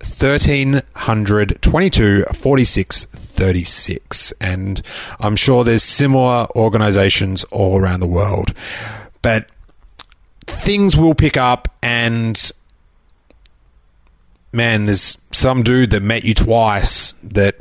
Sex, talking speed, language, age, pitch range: male, 100 wpm, English, 30-49, 95-120 Hz